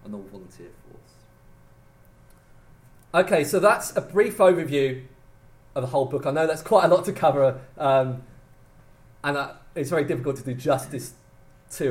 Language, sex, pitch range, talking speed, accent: English, male, 130-170 Hz, 155 wpm, British